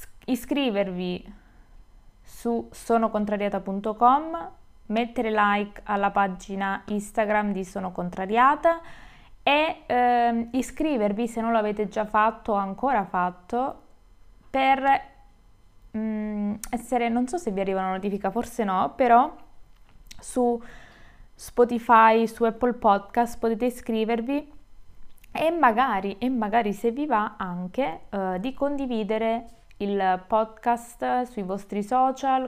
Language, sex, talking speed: Italian, female, 105 wpm